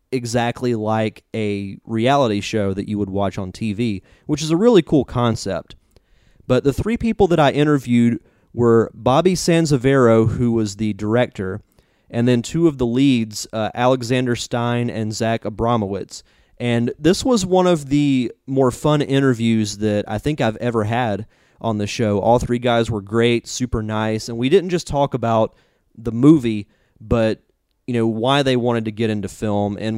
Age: 30-49